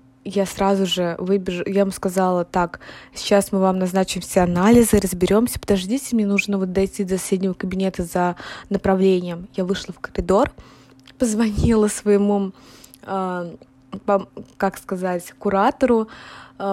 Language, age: Russian, 20-39